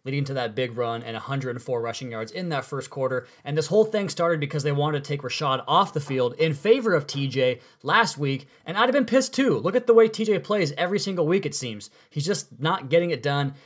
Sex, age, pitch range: male, 20-39, 130-160 Hz